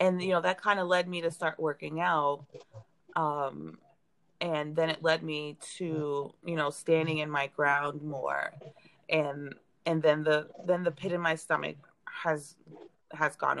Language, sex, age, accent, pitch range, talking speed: English, female, 30-49, American, 145-170 Hz, 170 wpm